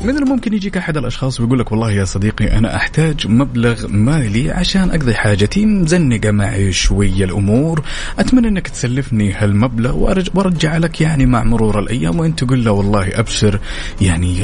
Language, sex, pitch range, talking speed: Arabic, male, 100-135 Hz, 150 wpm